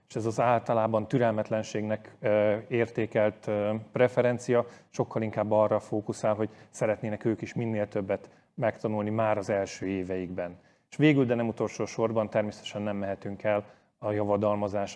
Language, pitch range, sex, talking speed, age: Hungarian, 105-120 Hz, male, 135 wpm, 30-49